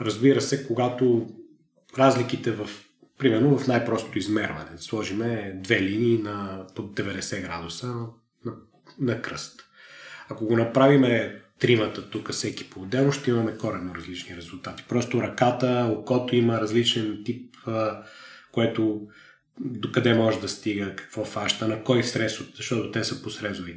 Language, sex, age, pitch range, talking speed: Bulgarian, male, 30-49, 110-135 Hz, 135 wpm